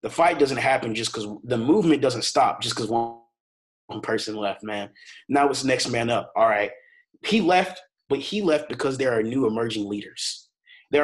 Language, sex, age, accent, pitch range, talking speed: English, male, 30-49, American, 115-160 Hz, 200 wpm